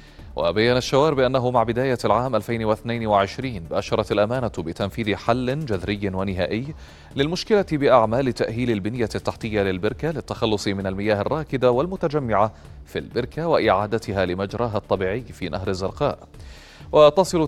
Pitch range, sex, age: 100-125 Hz, male, 30-49